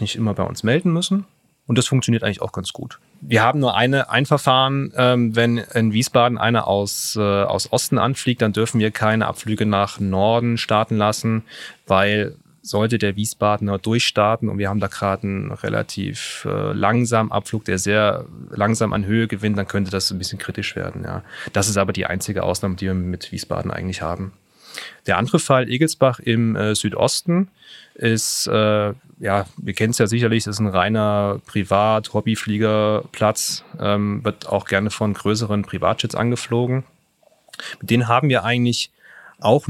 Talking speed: 165 wpm